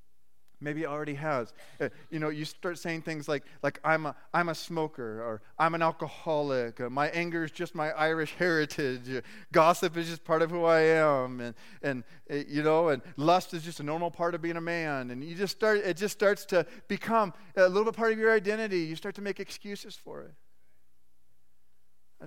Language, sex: English, male